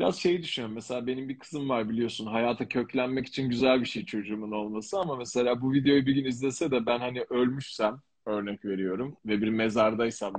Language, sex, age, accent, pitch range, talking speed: Turkish, male, 40-59, native, 110-140 Hz, 190 wpm